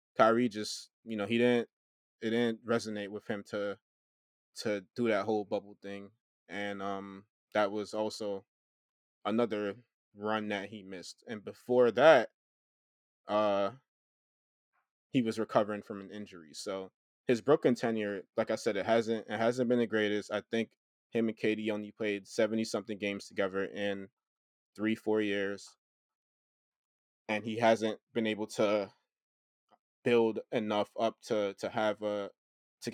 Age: 20-39